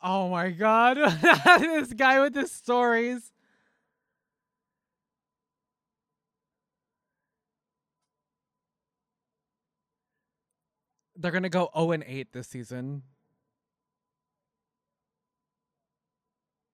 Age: 20-39